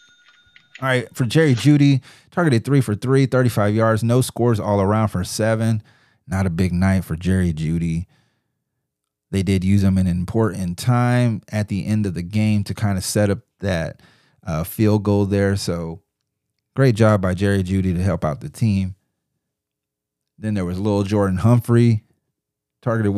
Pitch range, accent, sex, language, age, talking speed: 100-125 Hz, American, male, English, 30-49, 170 wpm